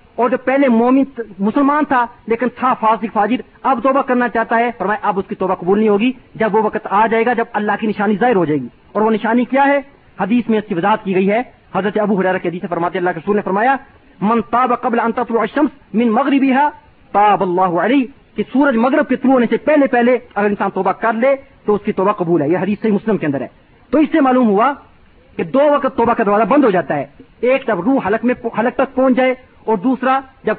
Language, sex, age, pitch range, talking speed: Urdu, male, 40-59, 210-255 Hz, 235 wpm